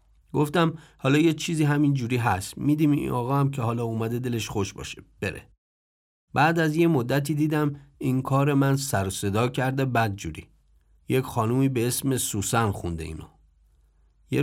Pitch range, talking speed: 100-145 Hz, 160 wpm